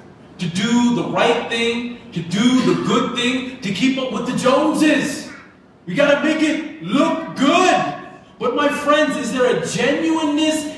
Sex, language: male, English